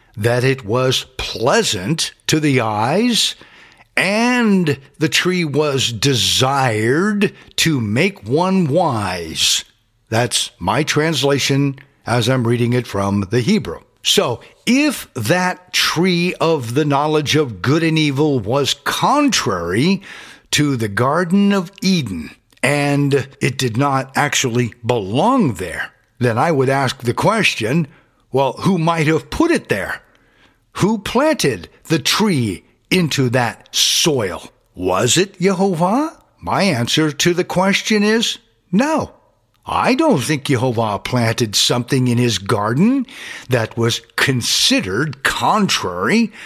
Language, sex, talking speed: English, male, 120 wpm